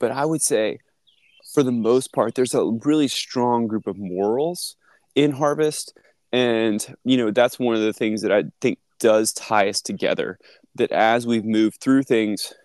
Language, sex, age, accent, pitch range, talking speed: English, male, 20-39, American, 105-125 Hz, 180 wpm